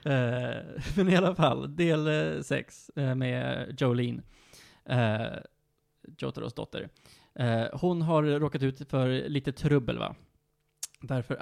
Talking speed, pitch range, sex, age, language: 100 wpm, 120-150 Hz, male, 20-39, Swedish